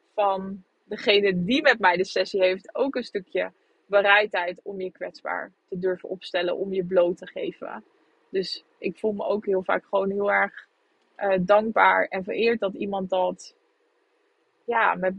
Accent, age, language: Dutch, 20-39, Dutch